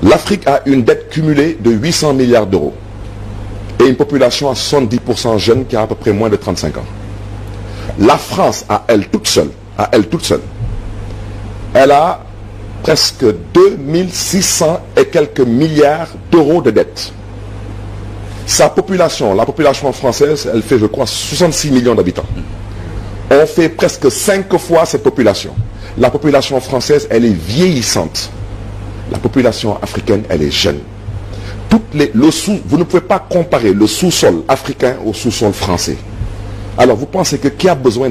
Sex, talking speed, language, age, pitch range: male, 145 wpm, French, 50-69, 105-160 Hz